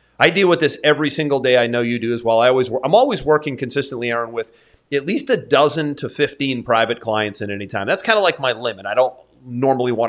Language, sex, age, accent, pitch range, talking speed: English, male, 30-49, American, 115-145 Hz, 255 wpm